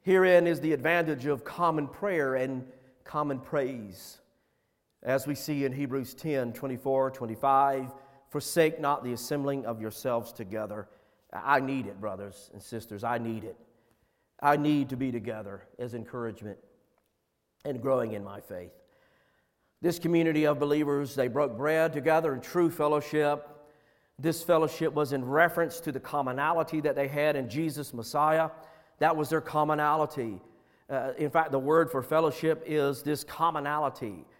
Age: 50-69